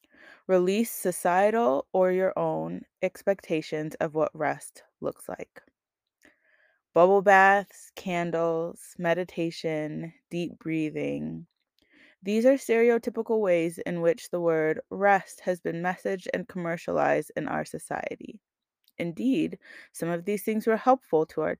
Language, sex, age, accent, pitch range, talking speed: English, female, 20-39, American, 170-225 Hz, 120 wpm